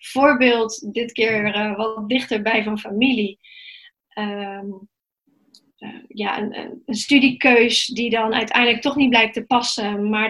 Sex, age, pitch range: female, 30-49, 220-260 Hz